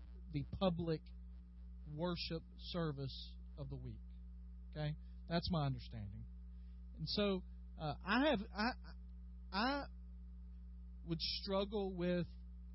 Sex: male